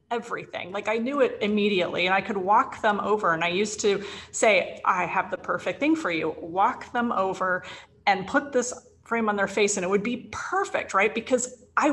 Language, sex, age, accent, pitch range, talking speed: English, female, 30-49, American, 185-245 Hz, 210 wpm